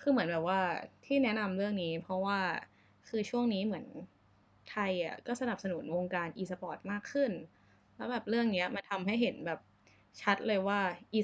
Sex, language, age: female, Thai, 10-29